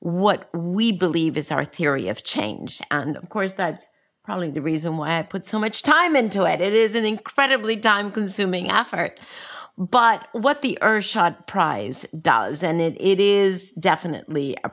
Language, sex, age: English, female, 40-59